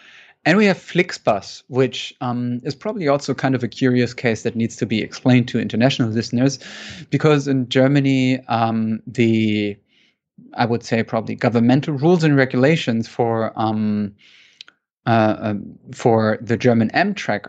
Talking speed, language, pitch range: 145 wpm, English, 115-135 Hz